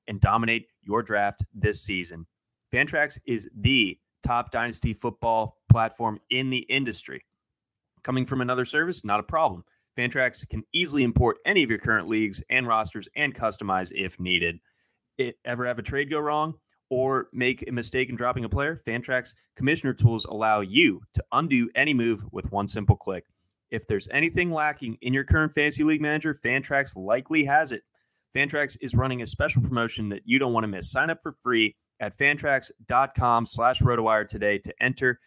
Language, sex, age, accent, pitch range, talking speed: English, male, 30-49, American, 105-130 Hz, 170 wpm